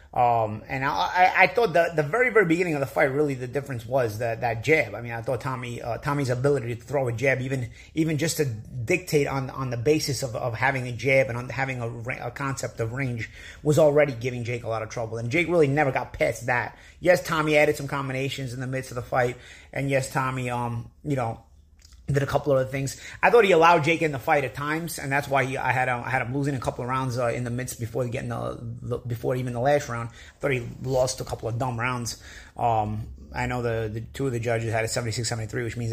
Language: English